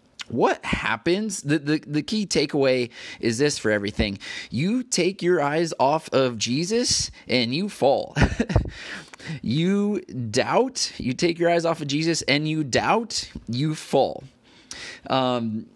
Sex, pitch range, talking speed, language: male, 120-155 Hz, 135 wpm, English